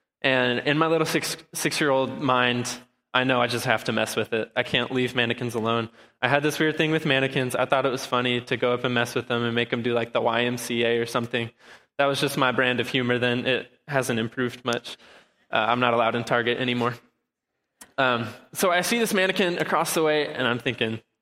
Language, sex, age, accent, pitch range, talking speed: English, male, 20-39, American, 125-150 Hz, 225 wpm